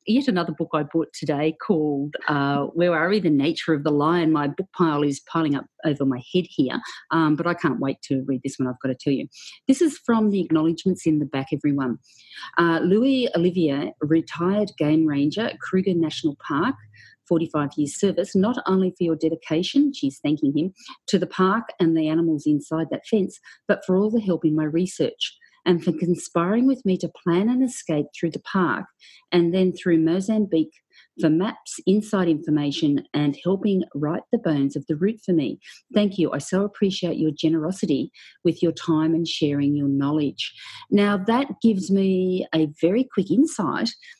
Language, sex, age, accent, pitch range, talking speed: English, female, 40-59, Australian, 155-200 Hz, 190 wpm